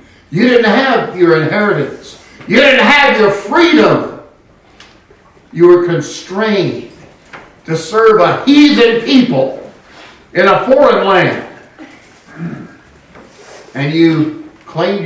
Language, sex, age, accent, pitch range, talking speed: English, male, 60-79, American, 160-265 Hz, 100 wpm